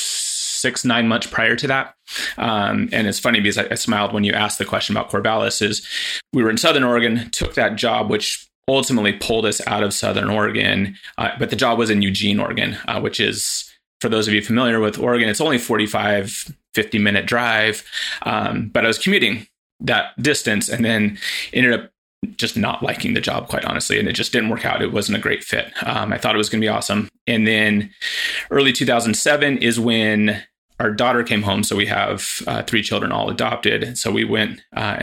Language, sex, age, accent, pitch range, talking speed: English, male, 30-49, American, 105-120 Hz, 210 wpm